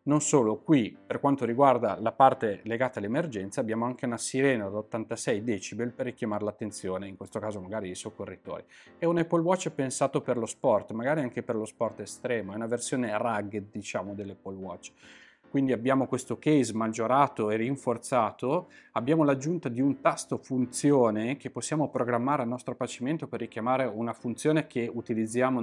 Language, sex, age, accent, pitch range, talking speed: Italian, male, 30-49, native, 110-135 Hz, 170 wpm